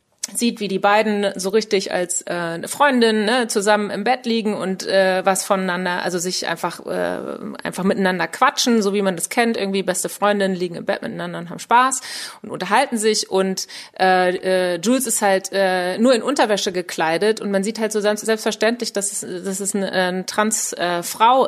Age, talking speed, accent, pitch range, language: 30-49, 190 wpm, German, 180-215 Hz, German